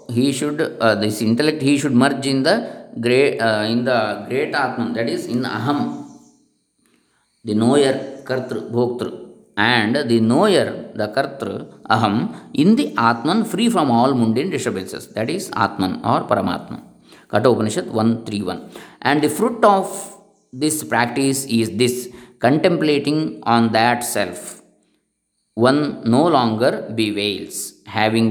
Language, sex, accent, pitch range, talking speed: English, male, Indian, 110-145 Hz, 135 wpm